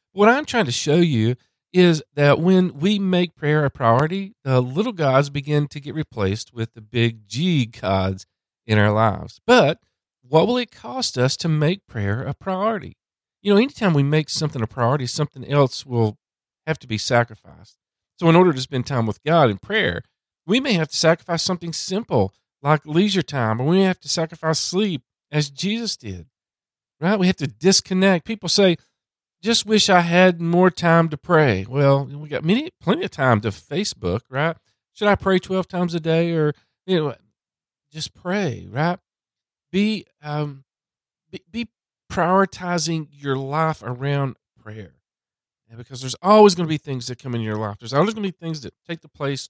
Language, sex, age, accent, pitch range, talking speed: English, male, 50-69, American, 120-180 Hz, 185 wpm